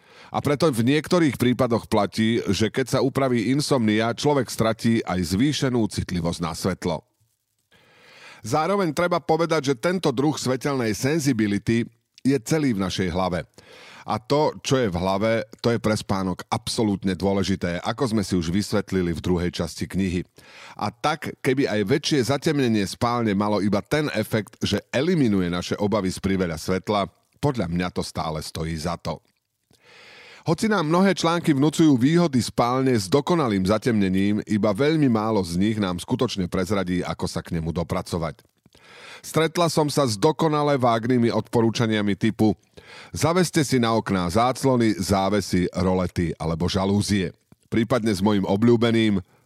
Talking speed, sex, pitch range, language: 145 wpm, male, 95-130 Hz, Slovak